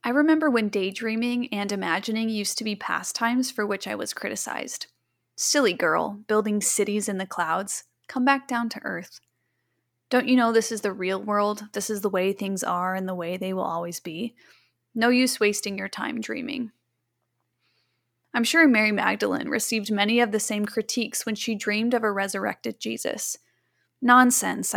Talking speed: 175 wpm